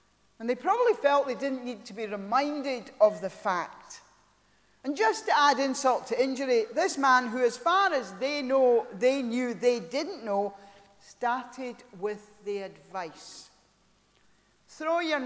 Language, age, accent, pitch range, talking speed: English, 40-59, British, 210-280 Hz, 150 wpm